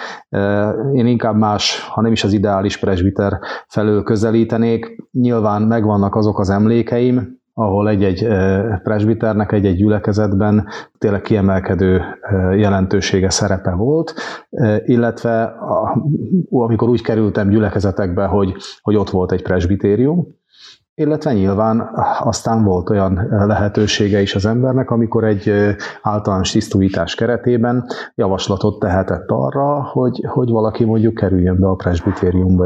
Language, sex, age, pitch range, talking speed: Hungarian, male, 30-49, 100-115 Hz, 115 wpm